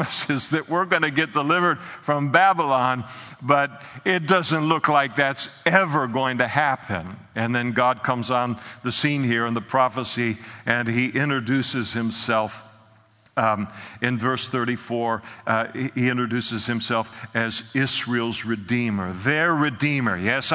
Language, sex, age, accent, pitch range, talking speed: English, male, 50-69, American, 115-135 Hz, 140 wpm